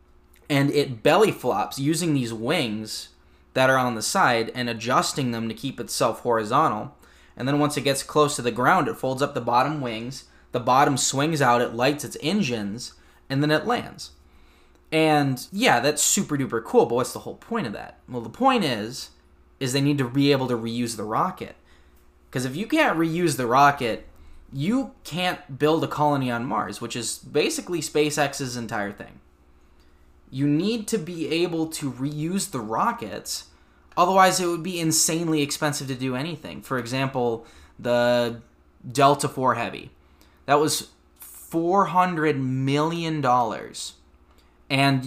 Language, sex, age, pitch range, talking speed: English, male, 10-29, 105-150 Hz, 160 wpm